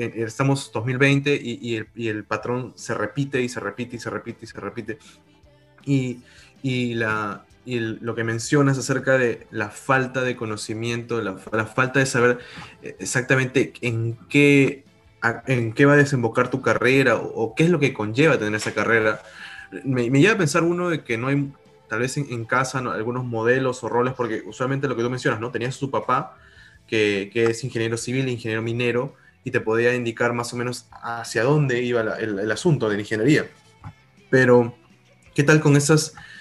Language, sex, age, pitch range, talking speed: Spanish, male, 20-39, 115-135 Hz, 195 wpm